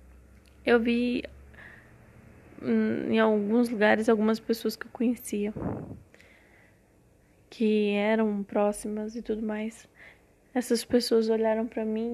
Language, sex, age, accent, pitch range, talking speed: Portuguese, female, 10-29, Brazilian, 215-235 Hz, 105 wpm